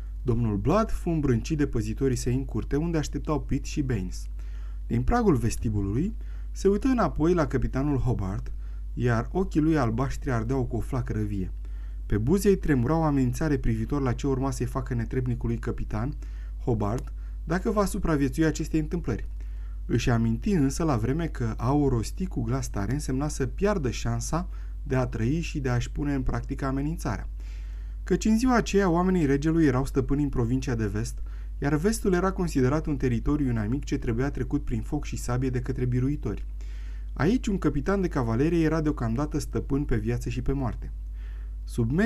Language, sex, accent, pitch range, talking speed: Romanian, male, native, 115-150 Hz, 165 wpm